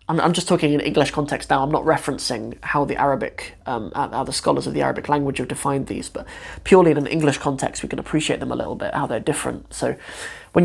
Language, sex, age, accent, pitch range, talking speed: English, male, 20-39, British, 140-160 Hz, 235 wpm